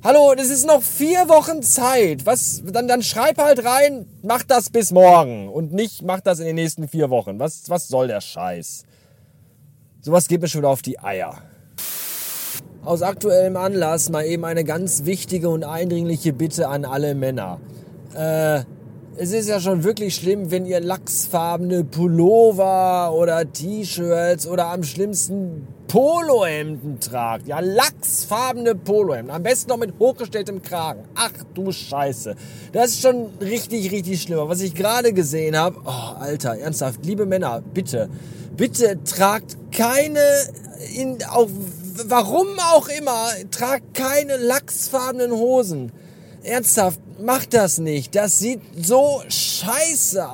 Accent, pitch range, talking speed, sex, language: German, 155-230 Hz, 145 wpm, male, German